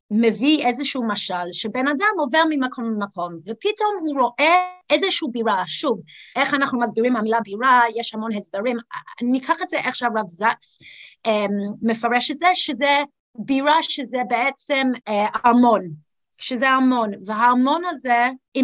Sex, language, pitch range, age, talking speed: female, Hebrew, 220-295 Hz, 30-49, 135 wpm